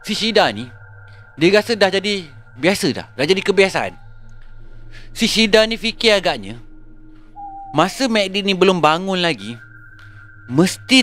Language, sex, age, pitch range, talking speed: Malay, male, 30-49, 110-175 Hz, 130 wpm